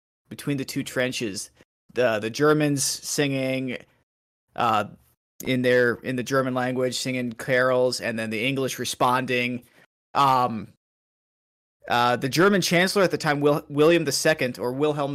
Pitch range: 120-145 Hz